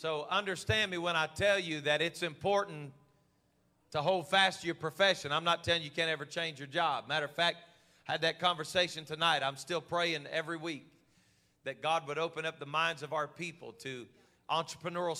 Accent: American